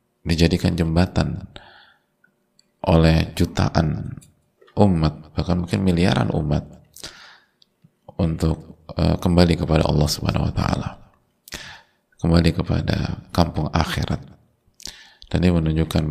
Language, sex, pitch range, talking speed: Indonesian, male, 80-90 Hz, 90 wpm